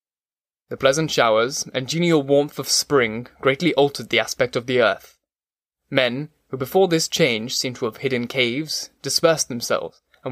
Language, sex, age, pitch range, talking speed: English, male, 10-29, 120-140 Hz, 165 wpm